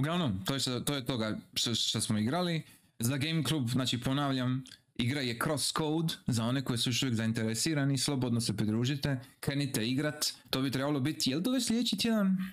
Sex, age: male, 30-49